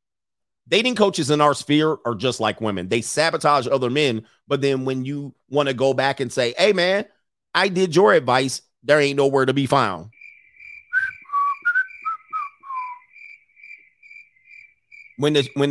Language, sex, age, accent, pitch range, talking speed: English, male, 30-49, American, 115-150 Hz, 140 wpm